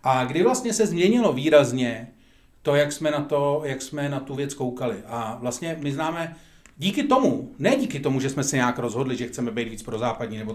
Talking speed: 215 wpm